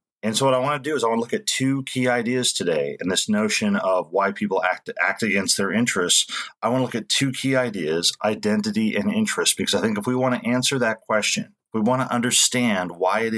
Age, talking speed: 40-59, 245 wpm